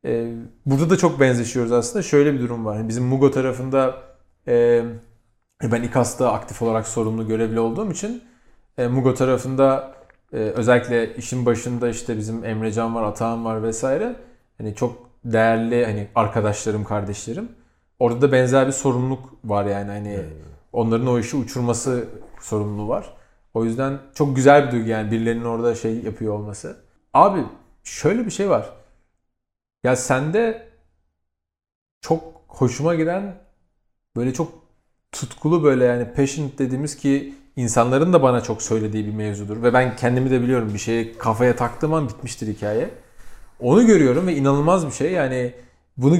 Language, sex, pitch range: Turkish, male, 110-135 Hz